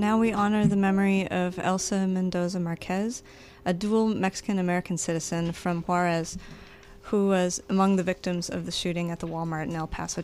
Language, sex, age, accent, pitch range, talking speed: English, female, 30-49, American, 170-200 Hz, 170 wpm